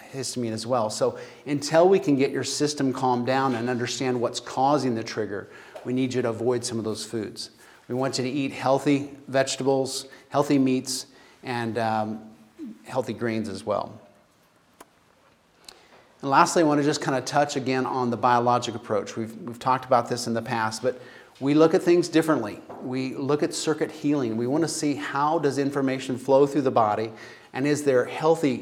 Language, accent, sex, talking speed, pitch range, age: English, American, male, 190 wpm, 120-140 Hz, 30-49